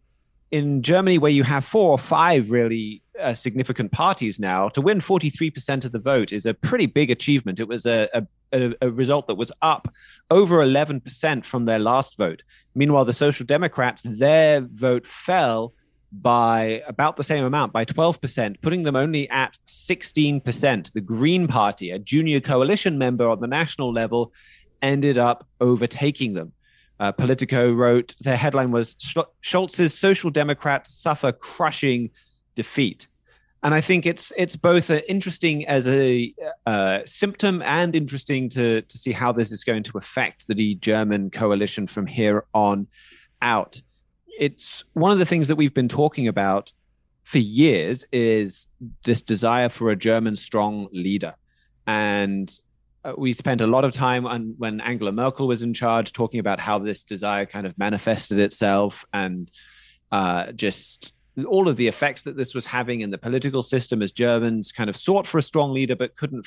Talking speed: 165 wpm